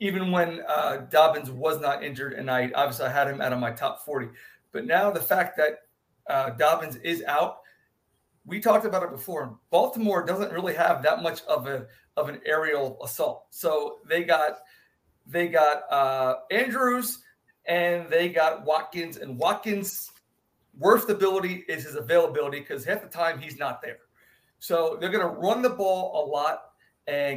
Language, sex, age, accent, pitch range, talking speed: English, male, 40-59, American, 150-190 Hz, 175 wpm